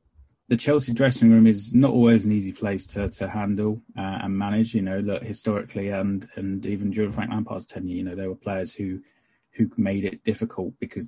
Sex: male